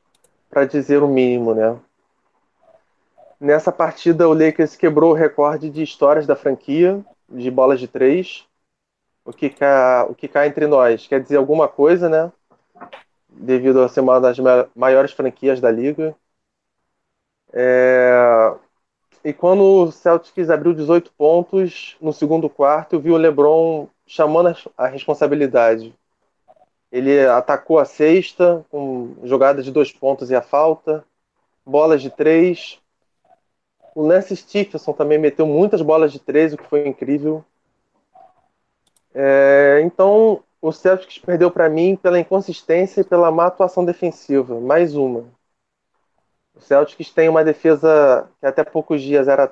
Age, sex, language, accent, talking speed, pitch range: 20-39, male, Portuguese, Brazilian, 135 wpm, 135-165 Hz